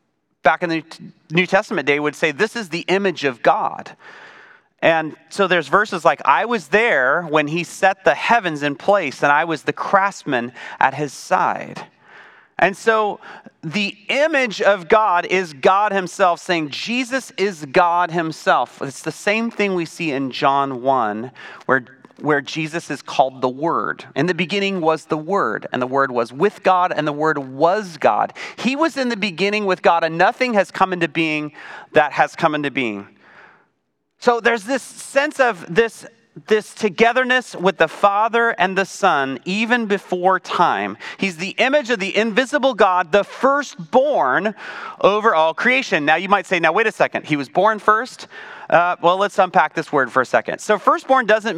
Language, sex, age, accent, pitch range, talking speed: English, male, 30-49, American, 155-215 Hz, 180 wpm